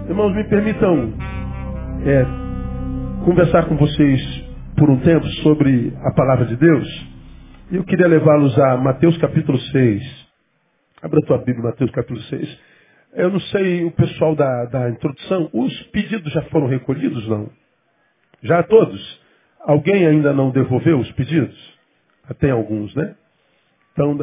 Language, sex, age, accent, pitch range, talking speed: Portuguese, male, 50-69, Brazilian, 130-165 Hz, 135 wpm